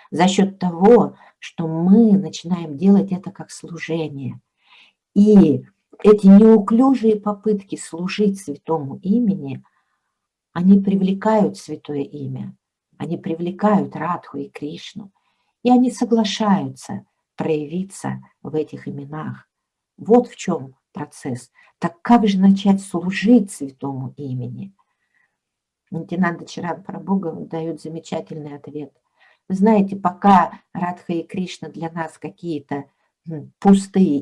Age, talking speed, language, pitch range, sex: 50-69, 105 wpm, Russian, 155-200 Hz, female